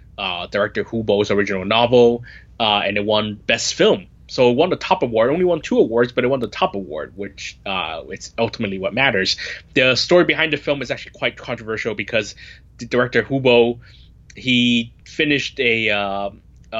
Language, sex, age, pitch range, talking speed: English, male, 20-39, 105-130 Hz, 180 wpm